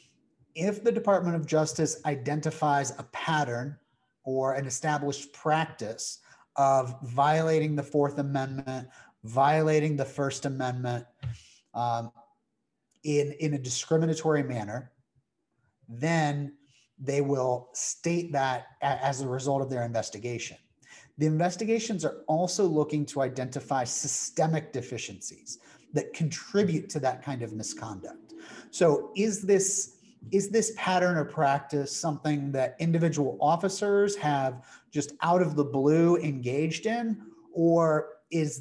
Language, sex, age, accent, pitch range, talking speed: English, male, 30-49, American, 130-165 Hz, 120 wpm